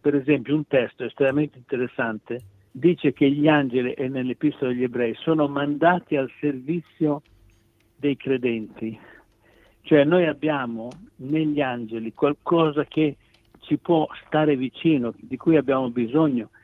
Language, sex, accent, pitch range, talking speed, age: Italian, male, native, 120-150 Hz, 125 wpm, 60-79